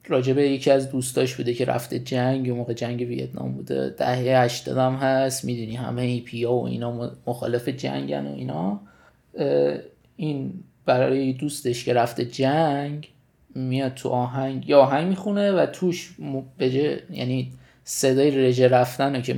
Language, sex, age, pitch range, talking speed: Persian, male, 20-39, 125-140 Hz, 150 wpm